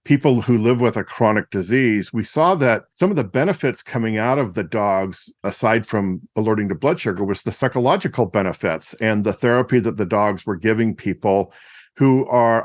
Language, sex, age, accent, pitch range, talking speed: English, male, 50-69, American, 100-130 Hz, 190 wpm